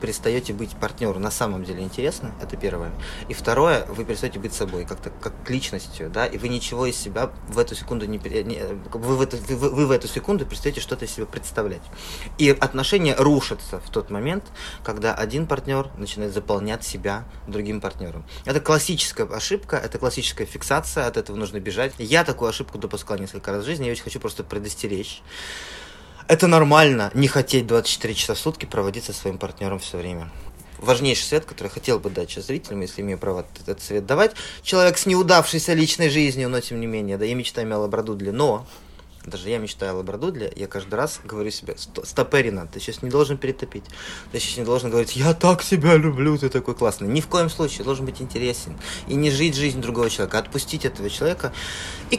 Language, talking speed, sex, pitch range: Russian, 190 wpm, male, 100-145 Hz